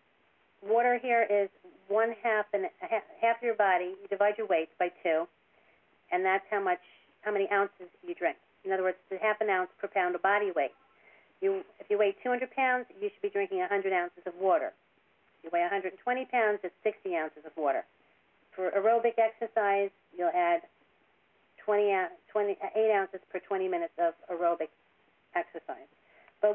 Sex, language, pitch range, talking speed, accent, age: female, English, 190-260 Hz, 170 wpm, American, 40-59